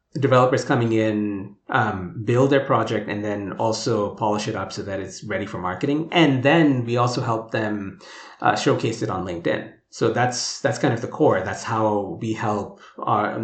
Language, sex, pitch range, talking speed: English, male, 105-125 Hz, 190 wpm